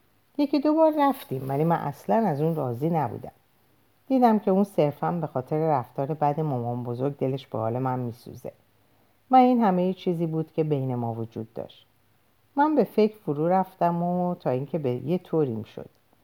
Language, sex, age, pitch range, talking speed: Persian, female, 50-69, 125-180 Hz, 175 wpm